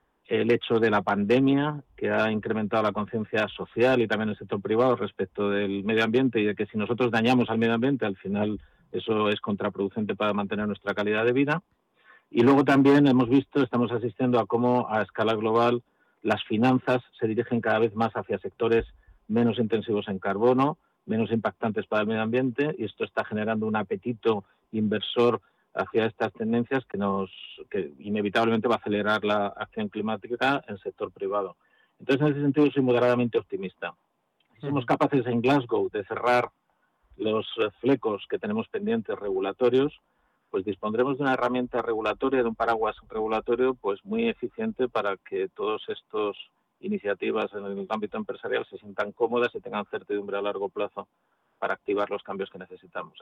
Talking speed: 170 wpm